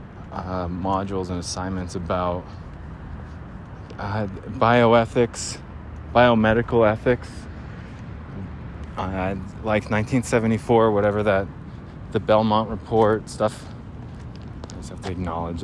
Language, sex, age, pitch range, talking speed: English, male, 20-39, 95-125 Hz, 90 wpm